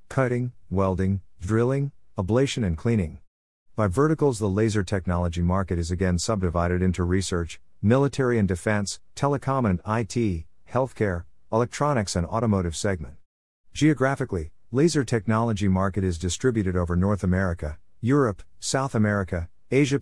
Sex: male